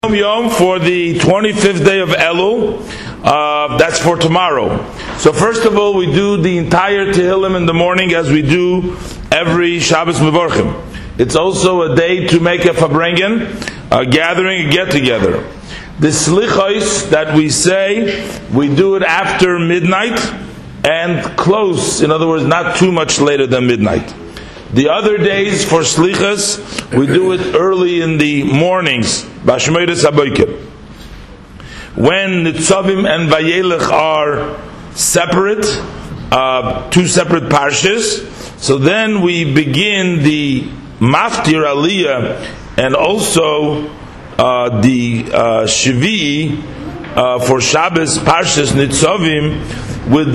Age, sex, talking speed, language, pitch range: 50-69, male, 125 wpm, English, 145-185 Hz